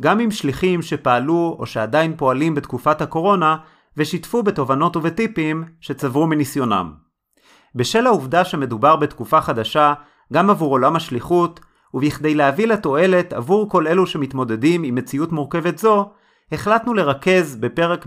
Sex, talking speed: male, 125 wpm